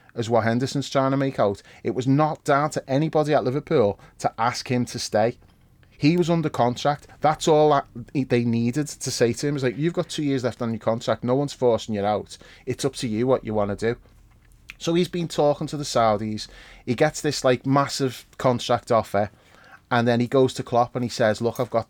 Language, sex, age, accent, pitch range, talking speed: English, male, 30-49, British, 115-150 Hz, 225 wpm